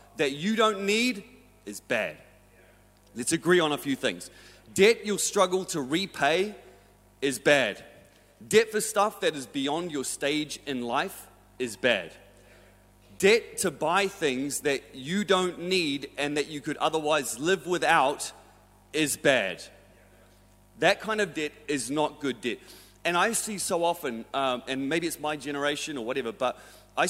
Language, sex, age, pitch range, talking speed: English, male, 30-49, 110-170 Hz, 155 wpm